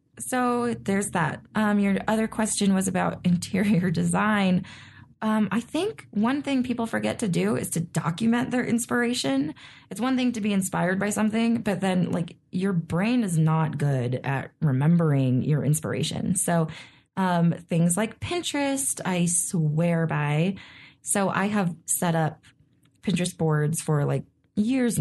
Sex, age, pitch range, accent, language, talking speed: female, 20-39, 155-195 Hz, American, English, 150 wpm